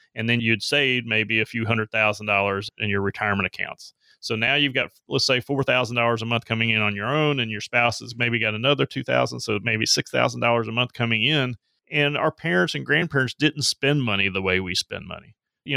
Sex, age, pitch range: male, 30-49, 105-125 Hz